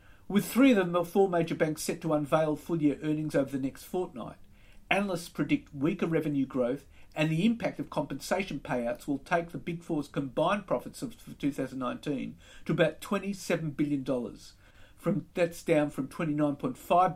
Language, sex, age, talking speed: English, male, 50-69, 160 wpm